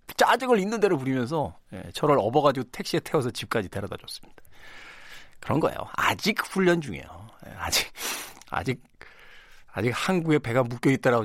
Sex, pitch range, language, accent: male, 110-150 Hz, Korean, native